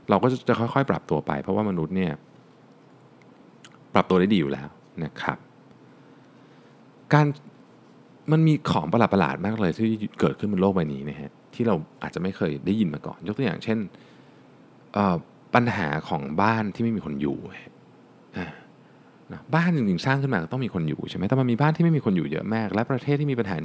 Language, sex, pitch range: Thai, male, 90-140 Hz